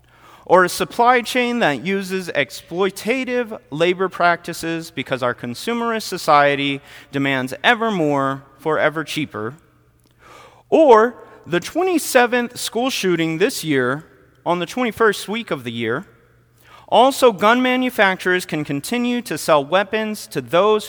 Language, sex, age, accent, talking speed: English, male, 30-49, American, 125 wpm